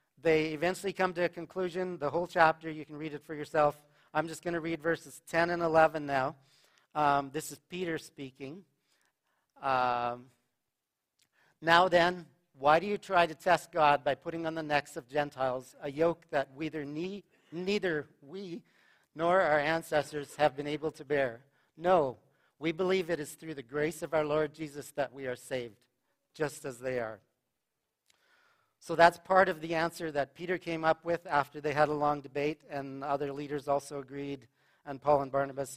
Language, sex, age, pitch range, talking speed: English, male, 50-69, 135-165 Hz, 180 wpm